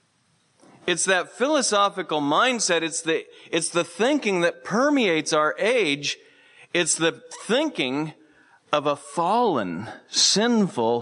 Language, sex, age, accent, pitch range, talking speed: English, male, 40-59, American, 120-185 Hz, 110 wpm